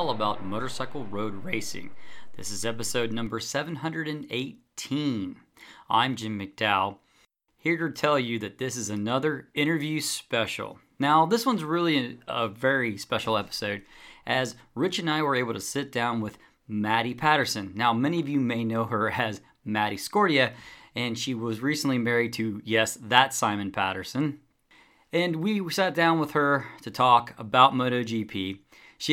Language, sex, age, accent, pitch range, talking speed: English, male, 40-59, American, 110-140 Hz, 150 wpm